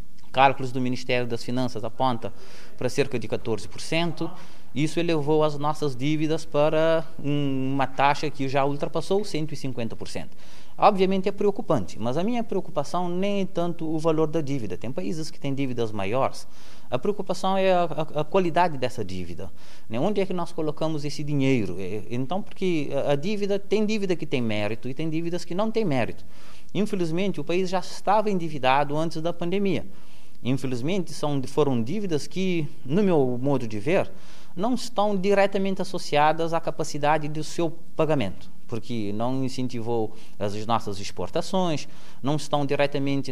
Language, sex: Portuguese, male